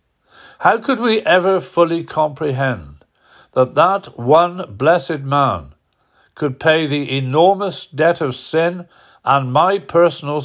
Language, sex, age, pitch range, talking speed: English, male, 60-79, 110-155 Hz, 120 wpm